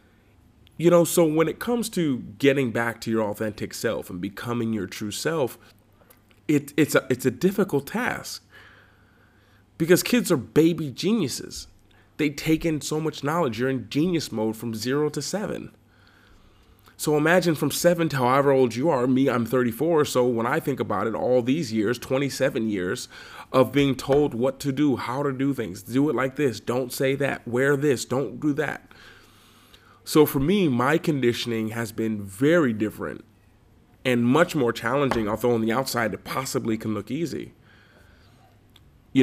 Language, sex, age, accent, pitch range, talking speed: English, male, 30-49, American, 110-140 Hz, 170 wpm